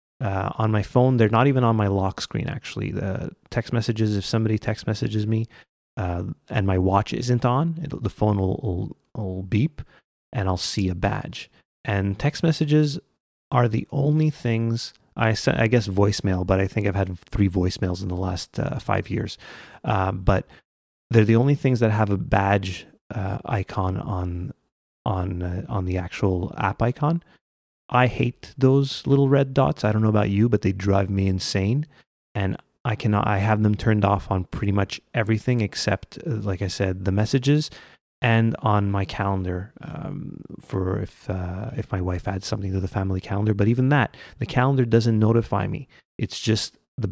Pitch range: 95-120 Hz